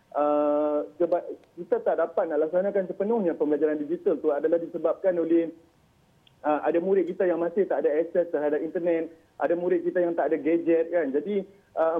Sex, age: male, 30-49